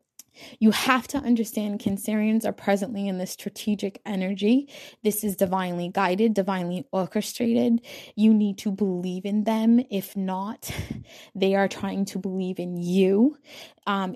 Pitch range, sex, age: 180-210 Hz, female, 20-39